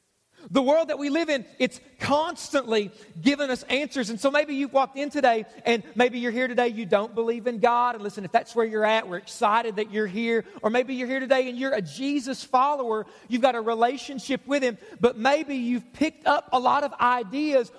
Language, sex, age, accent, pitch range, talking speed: English, male, 40-59, American, 215-275 Hz, 220 wpm